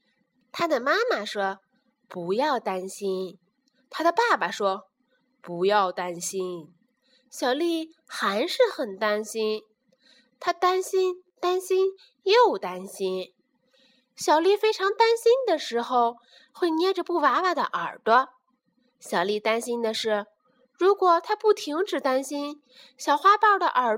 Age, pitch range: 20-39, 215-345 Hz